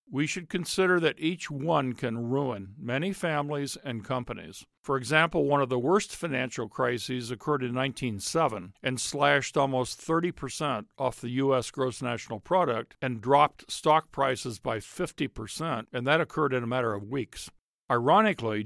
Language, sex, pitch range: English, male, 120-150 Hz